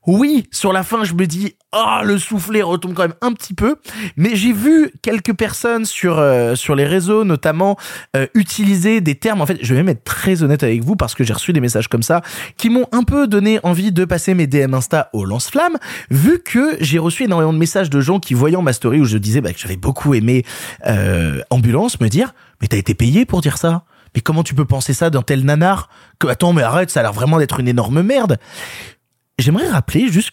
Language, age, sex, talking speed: French, 20-39, male, 245 wpm